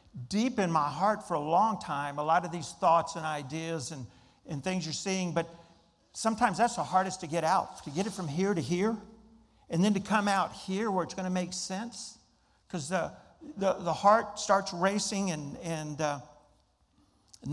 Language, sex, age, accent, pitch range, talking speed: English, male, 50-69, American, 150-185 Hz, 200 wpm